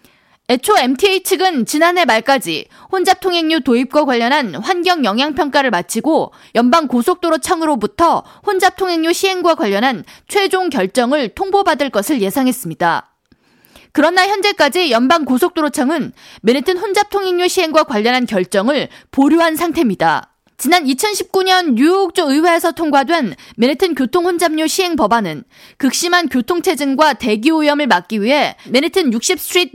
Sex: female